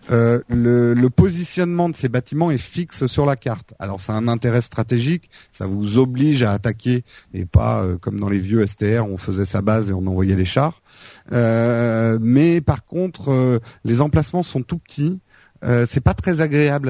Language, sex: French, male